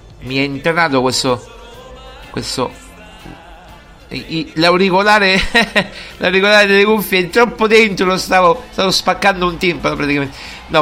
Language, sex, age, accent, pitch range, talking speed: Italian, male, 50-69, native, 160-205 Hz, 115 wpm